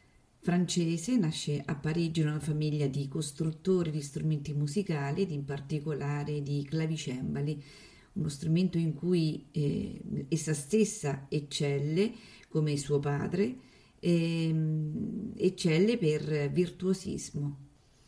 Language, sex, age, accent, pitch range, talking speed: Italian, female, 40-59, native, 145-180 Hz, 105 wpm